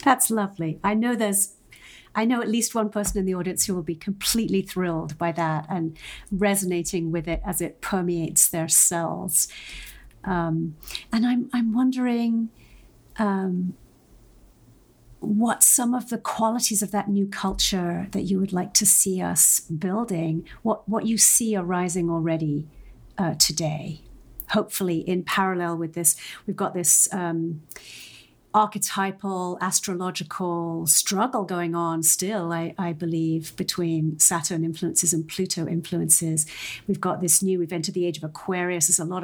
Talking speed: 150 wpm